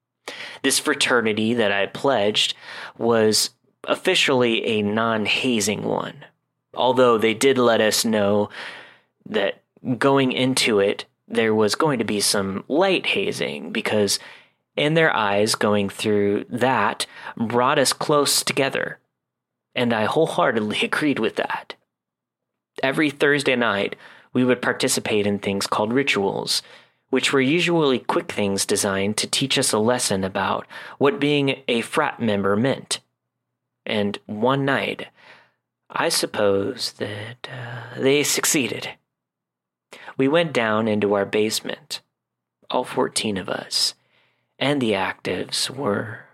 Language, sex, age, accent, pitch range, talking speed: English, male, 30-49, American, 105-140 Hz, 125 wpm